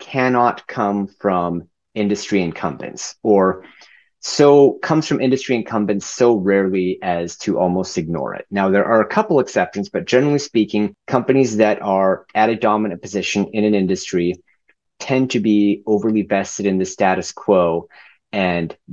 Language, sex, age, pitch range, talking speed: English, male, 30-49, 95-110 Hz, 150 wpm